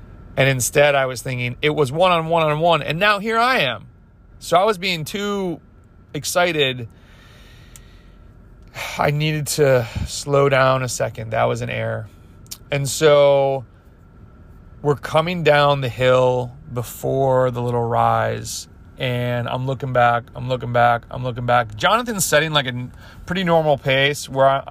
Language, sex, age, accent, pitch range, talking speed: English, male, 30-49, American, 115-145 Hz, 145 wpm